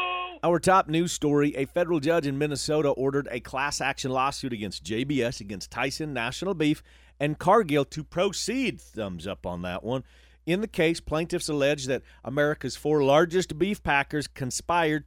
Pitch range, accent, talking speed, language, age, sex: 110-160 Hz, American, 165 wpm, English, 40-59, male